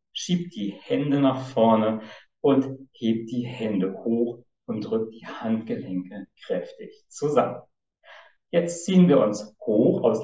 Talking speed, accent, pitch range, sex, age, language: 130 wpm, German, 110-175 Hz, male, 50-69, German